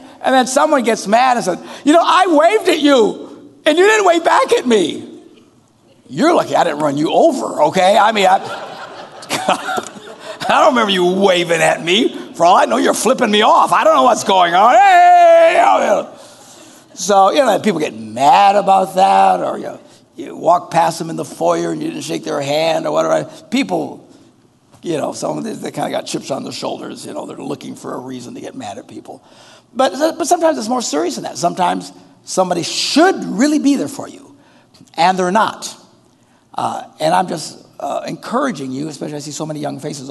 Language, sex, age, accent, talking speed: English, male, 60-79, American, 215 wpm